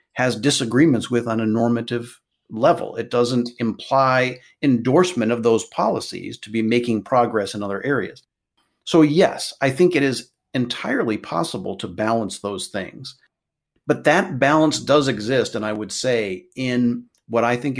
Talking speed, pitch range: 155 wpm, 110-130 Hz